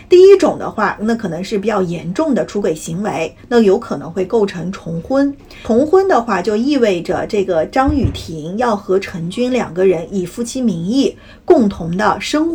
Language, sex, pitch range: Chinese, female, 185-280 Hz